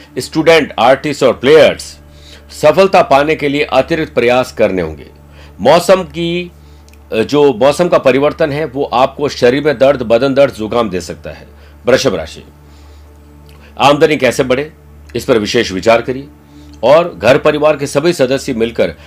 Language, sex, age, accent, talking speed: Hindi, male, 50-69, native, 150 wpm